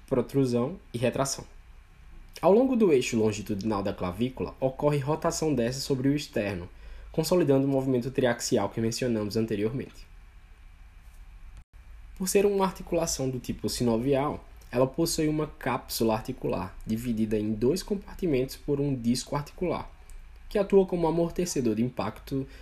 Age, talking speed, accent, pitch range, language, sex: 10-29, 130 wpm, Brazilian, 105-160 Hz, Portuguese, male